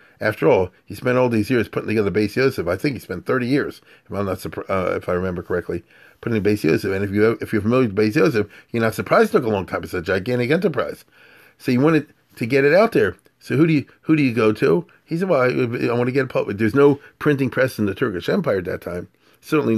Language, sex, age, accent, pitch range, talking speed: English, male, 40-59, American, 105-140 Hz, 275 wpm